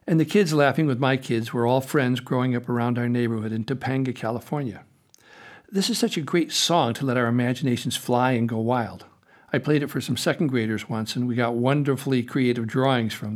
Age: 60-79